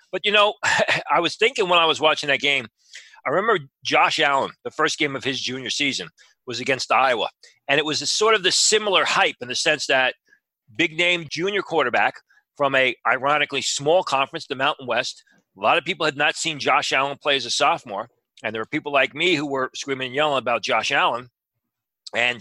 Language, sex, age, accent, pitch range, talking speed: English, male, 40-59, American, 125-160 Hz, 210 wpm